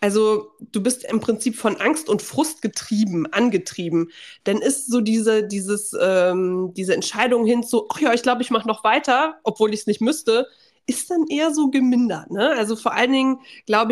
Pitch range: 195-250 Hz